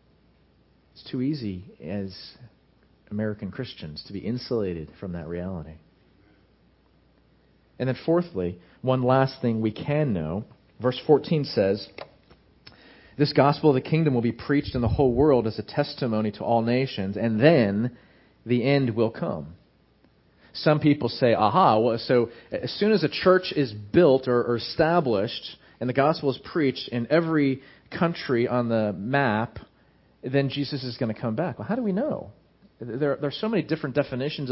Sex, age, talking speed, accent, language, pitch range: male, 40-59, 160 wpm, American, English, 110-145 Hz